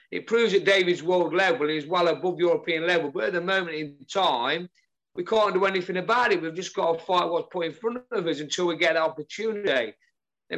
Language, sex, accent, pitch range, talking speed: English, male, British, 135-175 Hz, 225 wpm